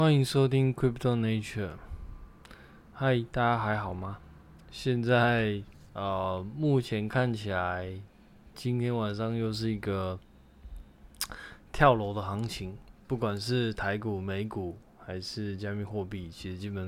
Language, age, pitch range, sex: Chinese, 20-39, 95-115 Hz, male